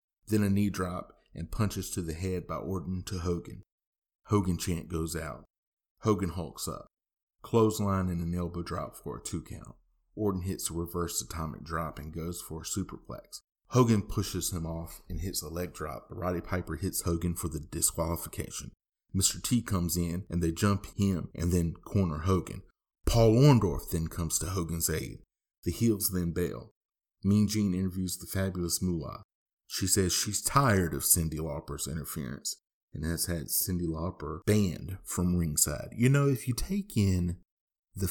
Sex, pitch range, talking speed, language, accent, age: male, 85-100 Hz, 170 wpm, English, American, 30-49